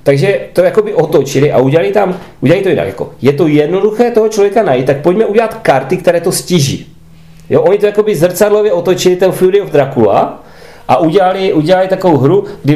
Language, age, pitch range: Czech, 30-49, 135-185 Hz